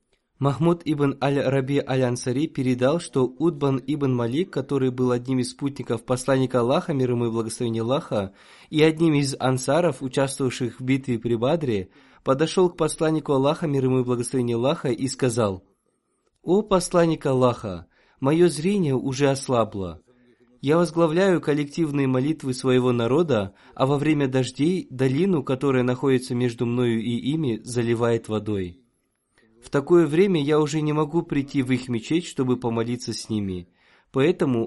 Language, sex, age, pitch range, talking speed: Russian, male, 20-39, 120-150 Hz, 140 wpm